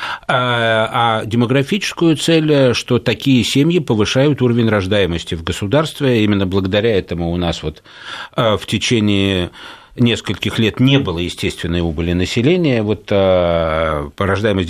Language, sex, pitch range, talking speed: Russian, male, 100-140 Hz, 105 wpm